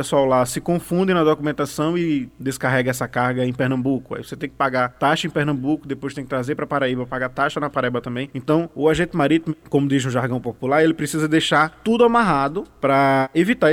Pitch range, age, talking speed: 135-165 Hz, 20-39, 205 wpm